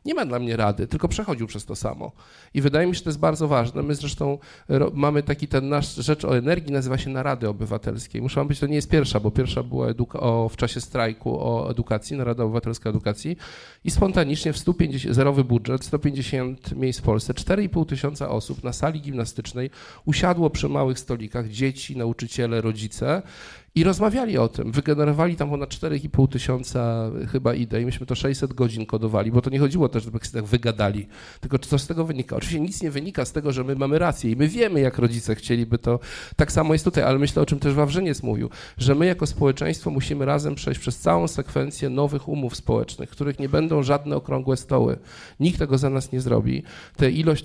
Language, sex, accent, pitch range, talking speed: Polish, male, native, 120-150 Hz, 205 wpm